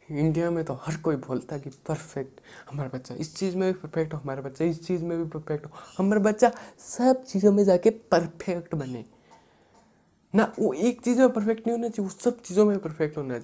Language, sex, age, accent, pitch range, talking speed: Hindi, male, 20-39, native, 135-180 Hz, 215 wpm